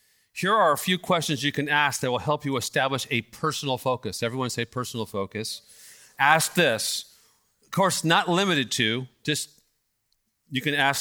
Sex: male